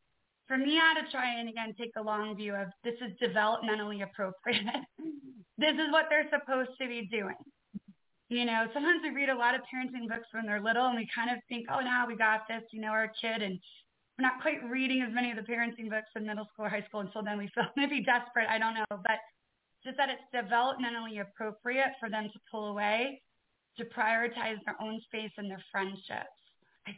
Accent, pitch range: American, 210-255 Hz